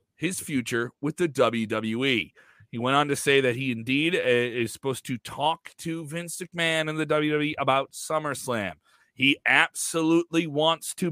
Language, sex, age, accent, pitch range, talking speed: English, male, 30-49, American, 115-155 Hz, 155 wpm